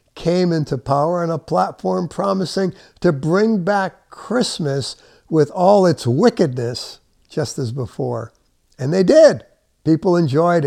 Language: English